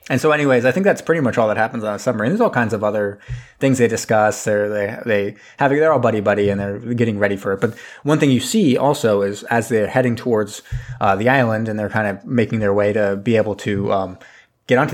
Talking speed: 255 wpm